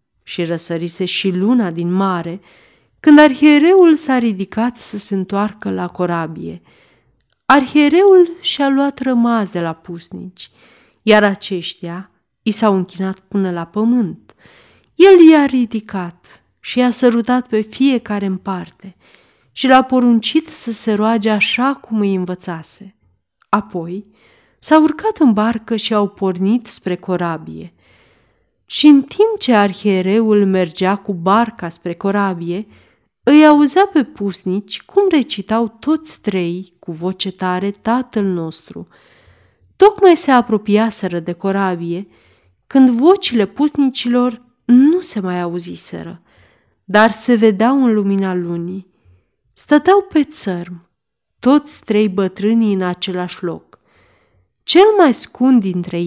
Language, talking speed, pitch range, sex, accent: Romanian, 125 wpm, 180-250 Hz, female, native